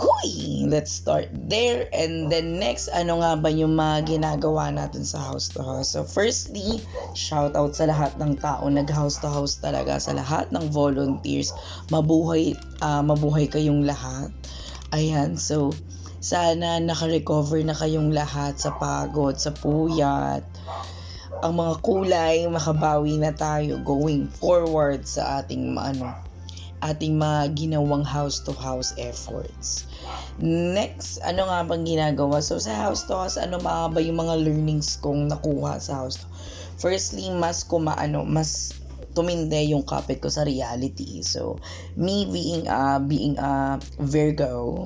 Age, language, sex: 20-39, Filipino, female